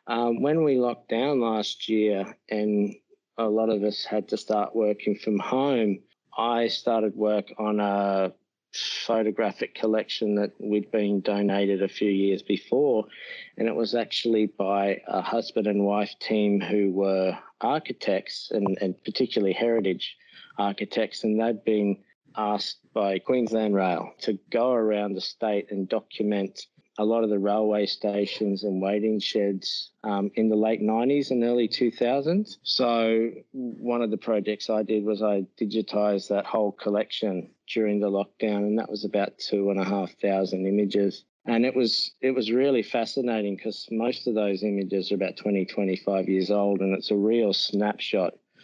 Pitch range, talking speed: 100-115 Hz, 160 wpm